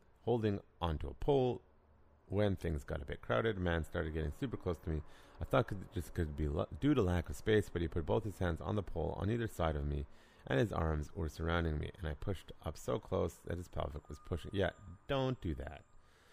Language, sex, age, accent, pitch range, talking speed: English, male, 30-49, American, 75-100 Hz, 230 wpm